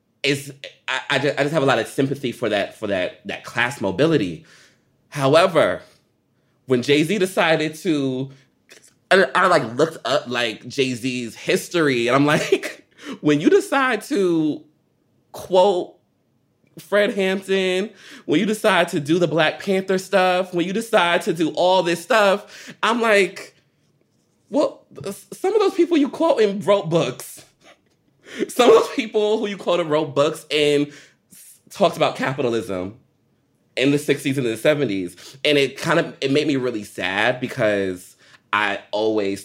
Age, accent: 20-39, American